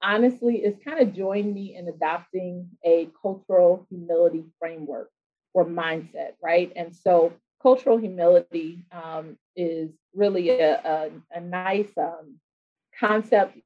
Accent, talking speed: American, 120 wpm